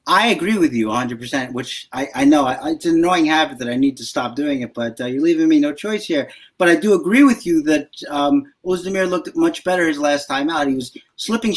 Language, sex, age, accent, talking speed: English, male, 30-49, American, 250 wpm